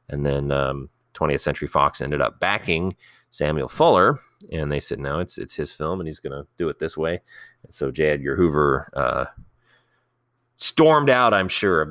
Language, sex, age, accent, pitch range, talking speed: English, male, 30-49, American, 80-120 Hz, 190 wpm